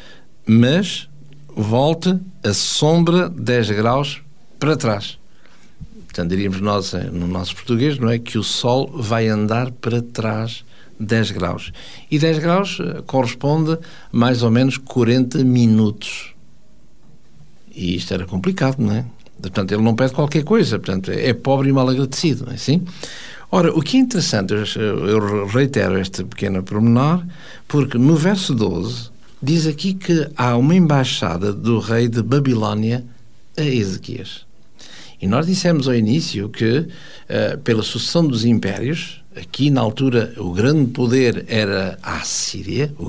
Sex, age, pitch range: male, 60-79, 110-155 Hz